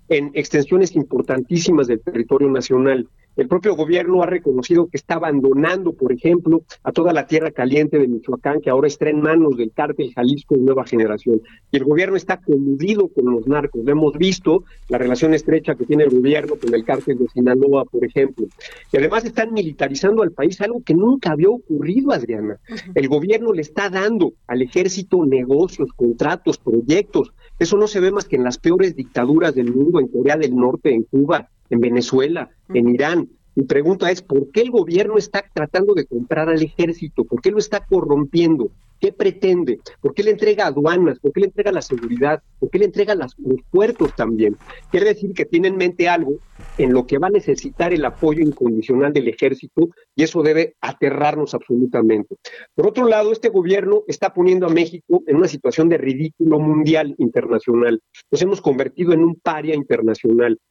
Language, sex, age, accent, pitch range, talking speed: Spanish, male, 50-69, Mexican, 135-200 Hz, 185 wpm